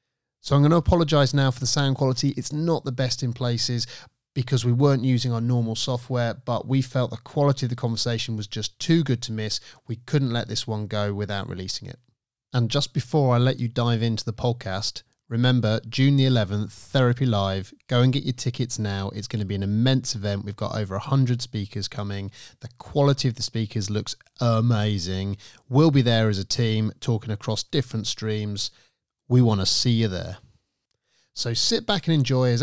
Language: English